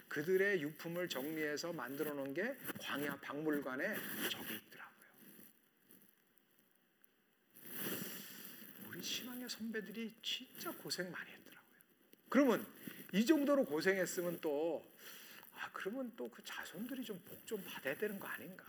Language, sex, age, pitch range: Korean, male, 50-69, 175-255 Hz